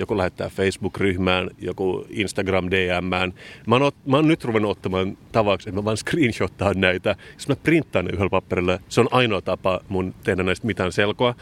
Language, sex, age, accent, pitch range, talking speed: Finnish, male, 30-49, native, 95-120 Hz, 175 wpm